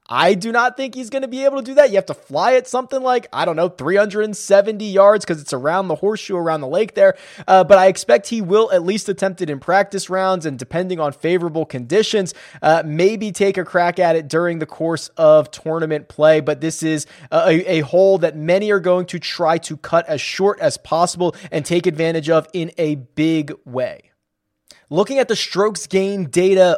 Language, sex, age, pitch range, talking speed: English, male, 20-39, 165-210 Hz, 215 wpm